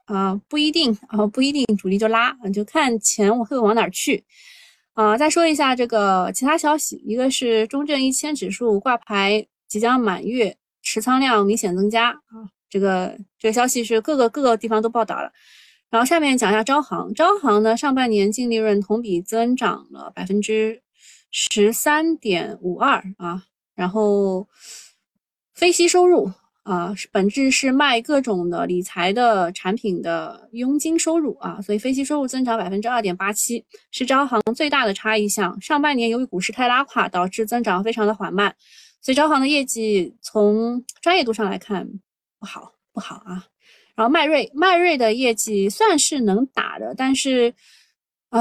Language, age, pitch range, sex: Chinese, 20-39, 205-270 Hz, female